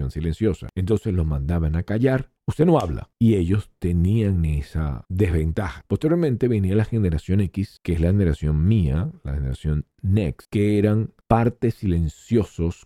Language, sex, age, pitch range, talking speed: Spanish, male, 50-69, 80-110 Hz, 145 wpm